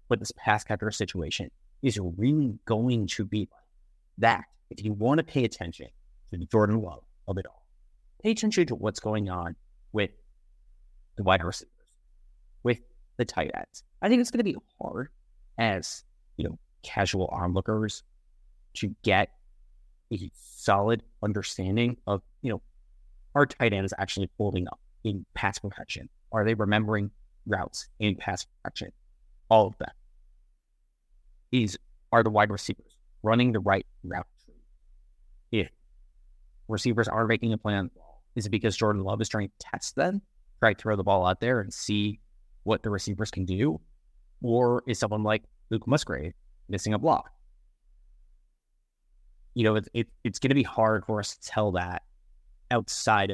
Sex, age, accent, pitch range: male, 30-49, American, 90-110 Hz